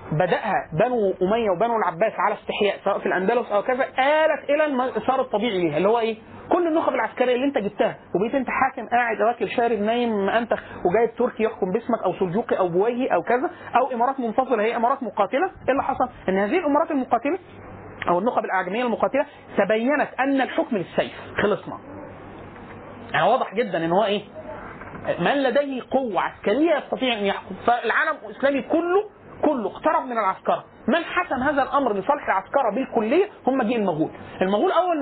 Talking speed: 170 wpm